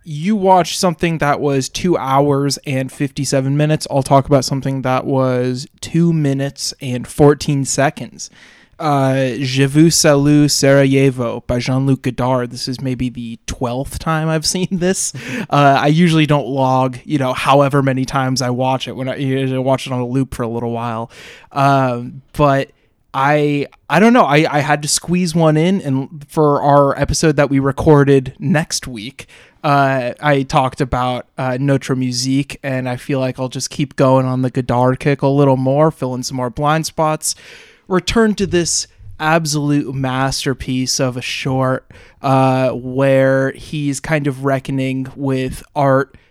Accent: American